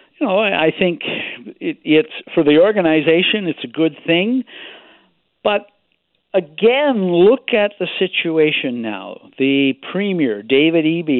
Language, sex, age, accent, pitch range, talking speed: English, male, 60-79, American, 125-180 Hz, 120 wpm